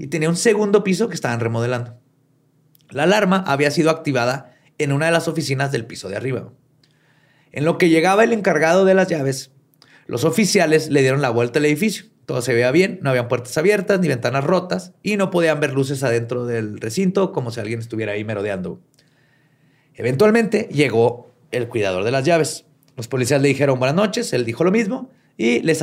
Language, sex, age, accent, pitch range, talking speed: Spanish, male, 30-49, Mexican, 130-165 Hz, 195 wpm